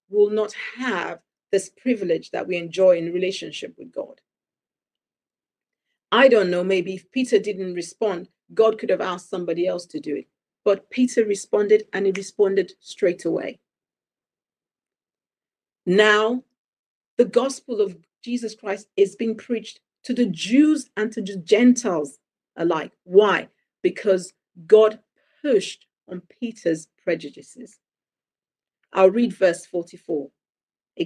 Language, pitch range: English, 190-250 Hz